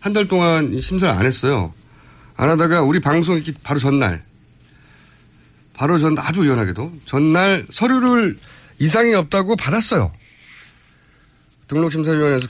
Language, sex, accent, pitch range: Korean, male, native, 115-175 Hz